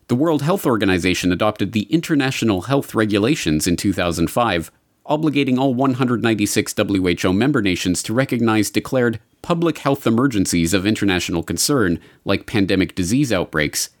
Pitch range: 90-125 Hz